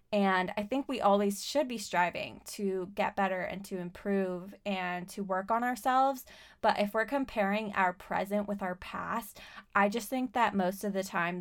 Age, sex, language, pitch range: 20-39, female, English, 185-210 Hz